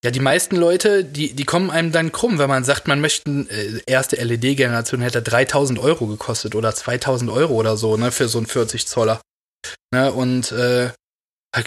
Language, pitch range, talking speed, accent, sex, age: German, 120-140 Hz, 190 wpm, German, male, 20-39